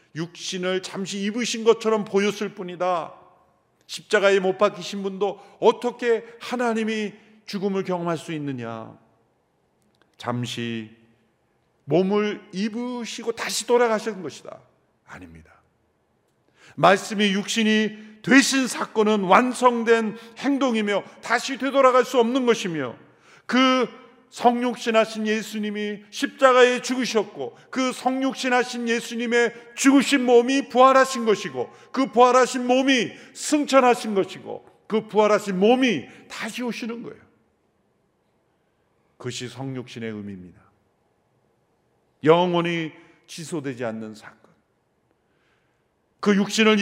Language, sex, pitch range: Korean, male, 195-245 Hz